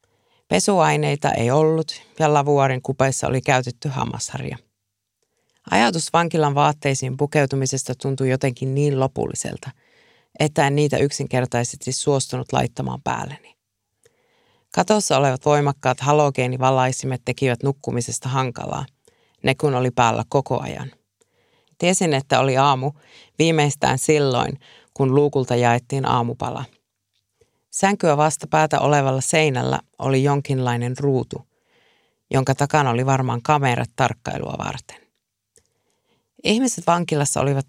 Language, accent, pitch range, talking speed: Finnish, native, 130-150 Hz, 100 wpm